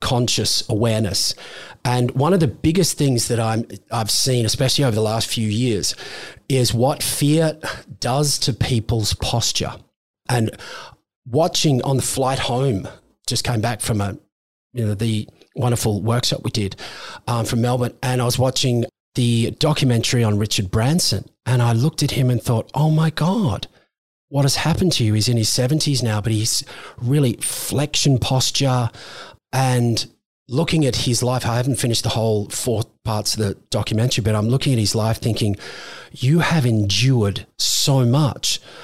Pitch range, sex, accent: 110-135 Hz, male, Australian